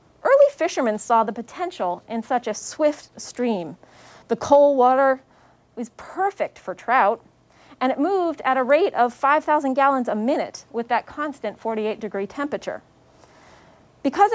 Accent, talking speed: American, 145 wpm